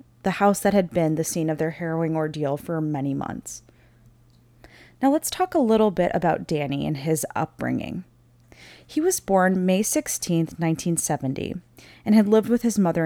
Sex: female